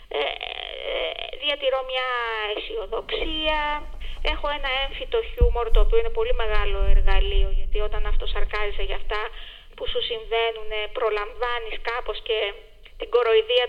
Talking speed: 115 wpm